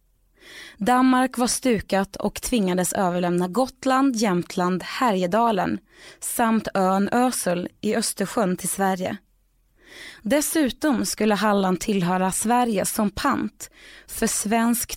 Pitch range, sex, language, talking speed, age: 180-235 Hz, female, Swedish, 100 wpm, 20-39